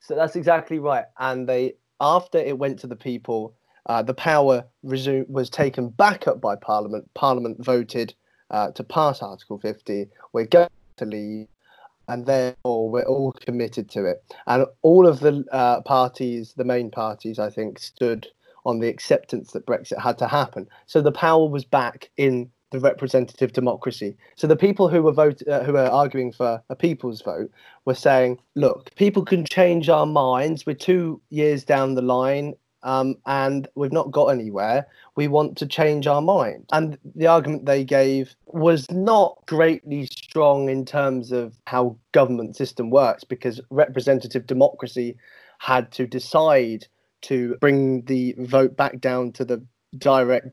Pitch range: 125-150 Hz